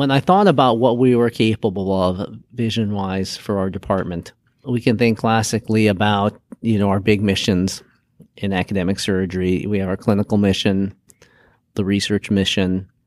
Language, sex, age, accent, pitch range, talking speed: English, male, 40-59, American, 100-115 Hz, 155 wpm